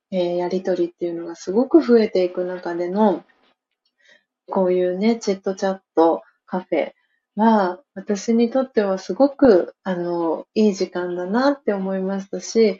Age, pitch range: 40-59, 180-220 Hz